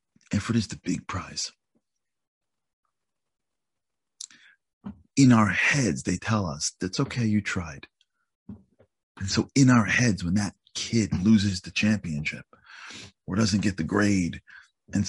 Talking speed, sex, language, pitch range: 125 wpm, male, English, 85-110 Hz